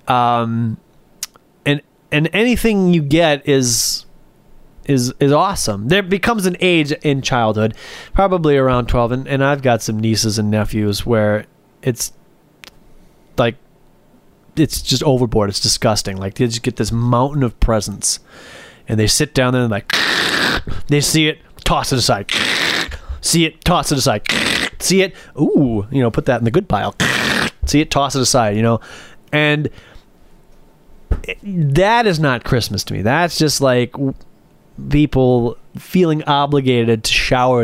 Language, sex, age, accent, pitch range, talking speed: English, male, 20-39, American, 110-150 Hz, 150 wpm